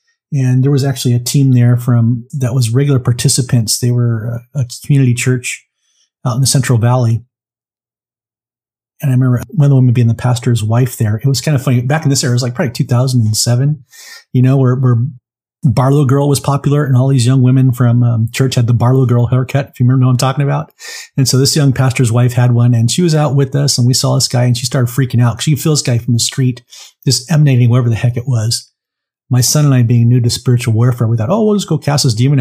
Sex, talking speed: male, 250 wpm